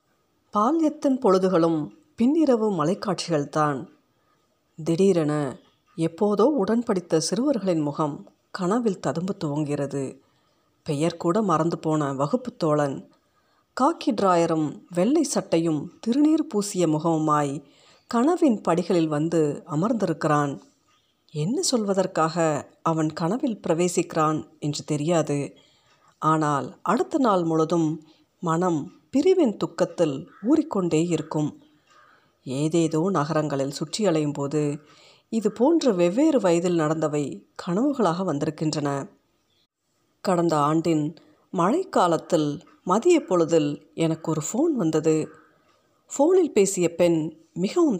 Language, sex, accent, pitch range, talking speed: Tamil, female, native, 155-215 Hz, 90 wpm